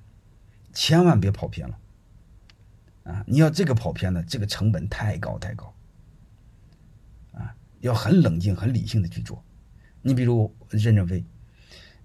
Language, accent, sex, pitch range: Chinese, native, male, 95-115 Hz